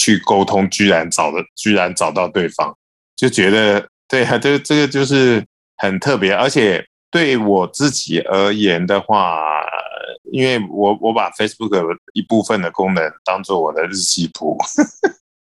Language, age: Chinese, 20-39